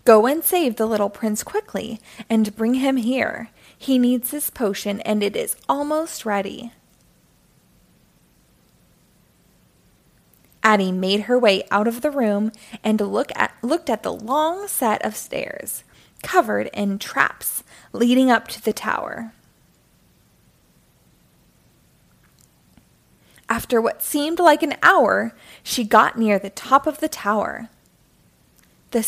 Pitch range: 210-270 Hz